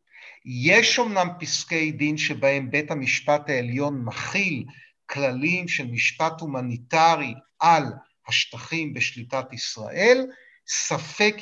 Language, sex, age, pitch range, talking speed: Hebrew, male, 50-69, 140-195 Hz, 95 wpm